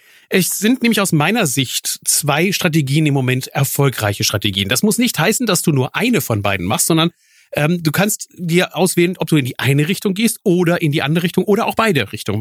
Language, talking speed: German, 220 wpm